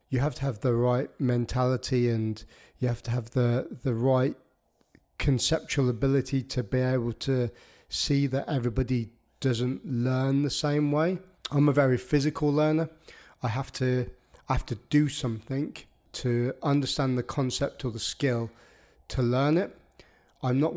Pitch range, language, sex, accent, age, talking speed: 120-140 Hz, English, male, British, 30-49, 150 wpm